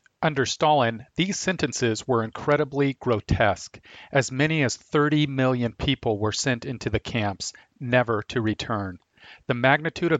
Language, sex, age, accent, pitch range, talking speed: English, male, 40-59, American, 110-140 Hz, 140 wpm